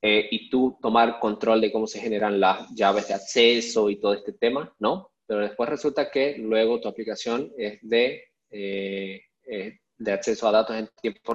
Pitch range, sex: 105-135 Hz, male